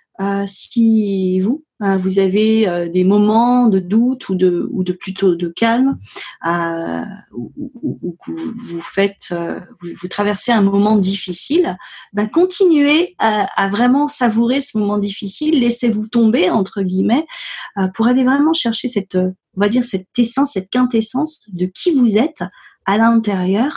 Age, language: 30-49, French